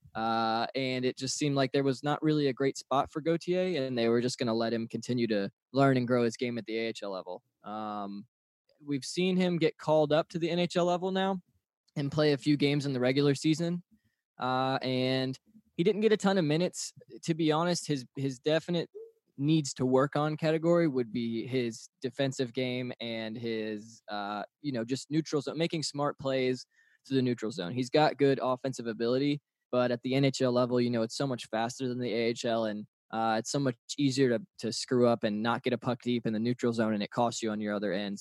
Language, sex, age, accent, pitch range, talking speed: English, male, 20-39, American, 115-145 Hz, 225 wpm